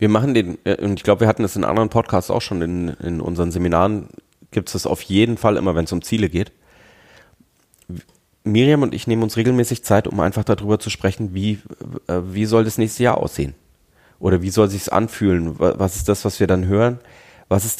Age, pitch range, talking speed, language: 30-49, 95-115 Hz, 210 wpm, German